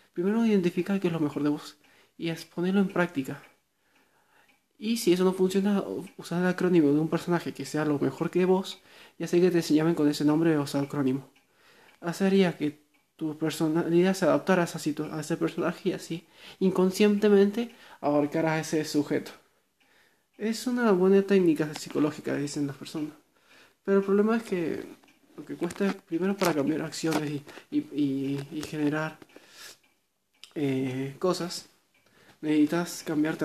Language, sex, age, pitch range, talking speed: Spanish, male, 20-39, 155-195 Hz, 155 wpm